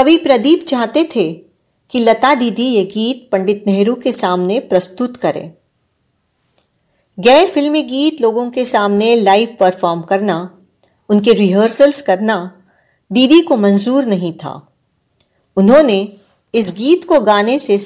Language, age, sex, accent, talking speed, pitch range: Marathi, 50-69, female, native, 55 wpm, 195-260 Hz